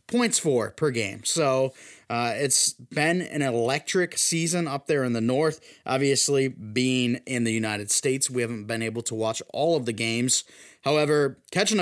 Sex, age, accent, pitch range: male, 20-39, American, 130-170 Hz